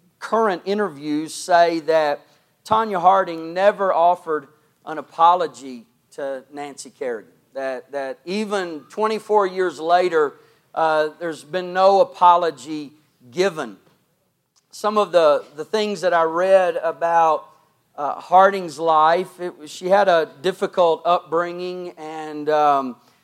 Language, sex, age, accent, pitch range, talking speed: English, male, 40-59, American, 150-180 Hz, 120 wpm